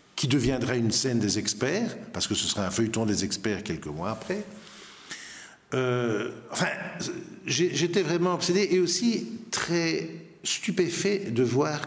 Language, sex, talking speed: French, male, 145 wpm